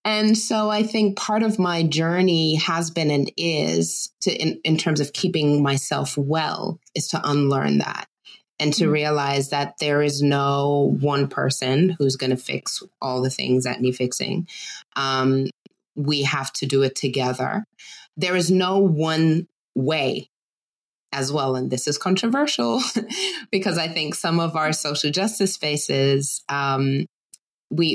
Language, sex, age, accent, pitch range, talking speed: English, female, 20-39, American, 135-165 Hz, 155 wpm